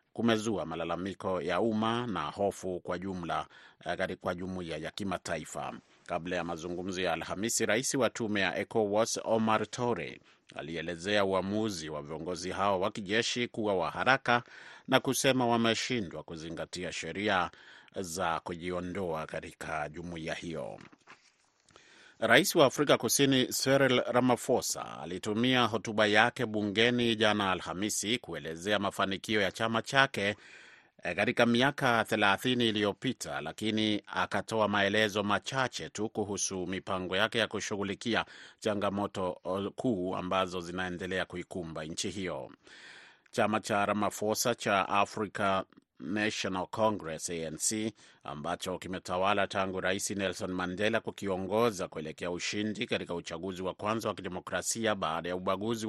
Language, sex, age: Swahili, male, 30-49